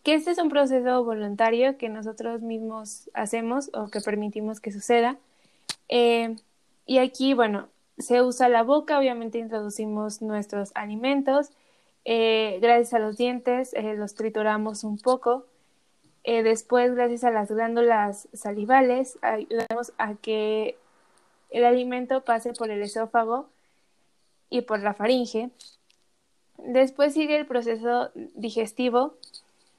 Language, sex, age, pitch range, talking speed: Spanish, female, 20-39, 225-260 Hz, 125 wpm